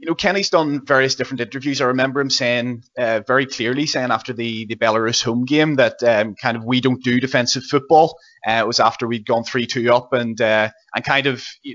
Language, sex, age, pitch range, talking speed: English, male, 20-39, 120-145 Hz, 225 wpm